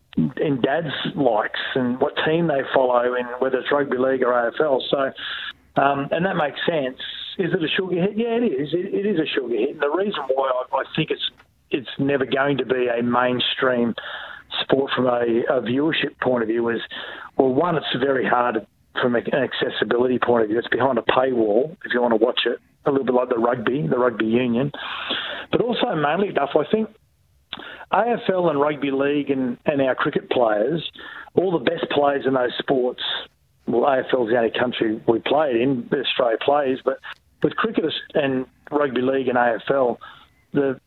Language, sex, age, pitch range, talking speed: English, male, 40-59, 125-145 Hz, 190 wpm